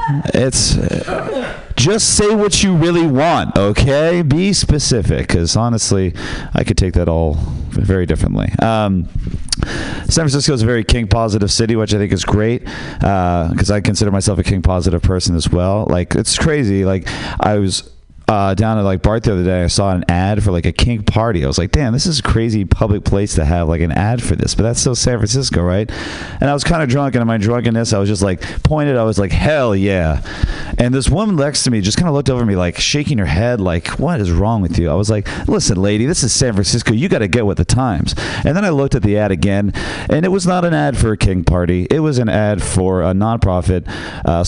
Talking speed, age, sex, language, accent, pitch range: 235 wpm, 40-59, male, English, American, 90-120 Hz